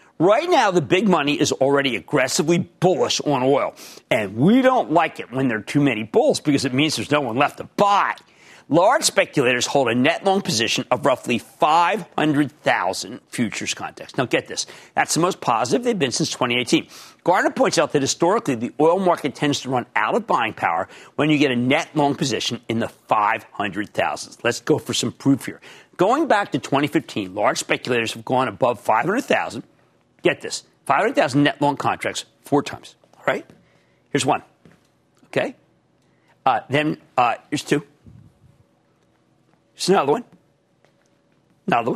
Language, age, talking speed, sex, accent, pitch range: English, 50-69, 165 wpm, male, American, 130-170 Hz